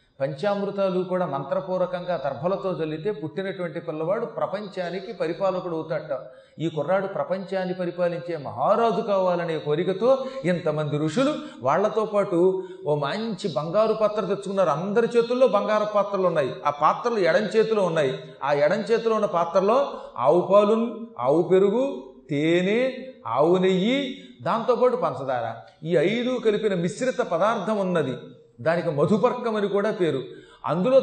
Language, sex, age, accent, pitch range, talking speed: Telugu, male, 30-49, native, 170-220 Hz, 115 wpm